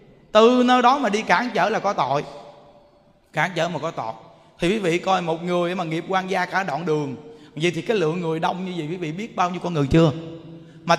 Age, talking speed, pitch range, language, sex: 20-39, 245 wpm, 180-245 Hz, Vietnamese, male